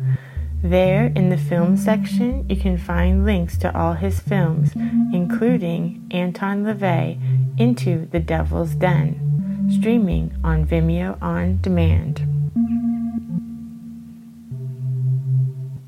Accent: American